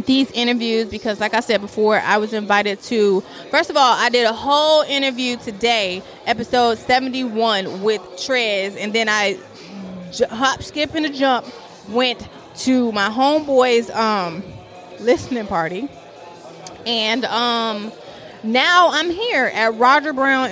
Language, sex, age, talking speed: English, female, 20-39, 135 wpm